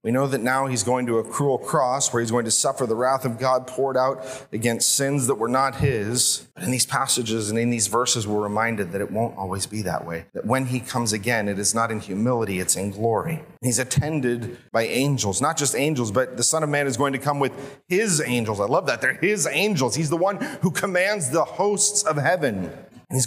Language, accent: English, American